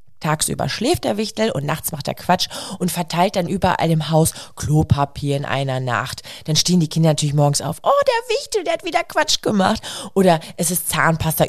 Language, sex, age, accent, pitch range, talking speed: German, female, 30-49, German, 150-200 Hz, 200 wpm